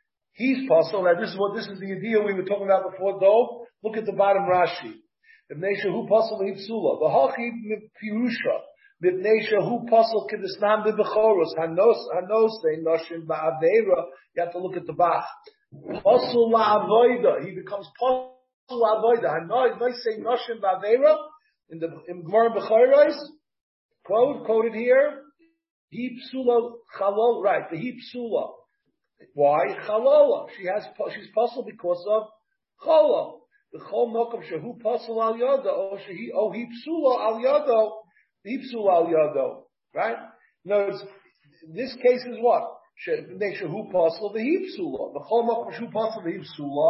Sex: male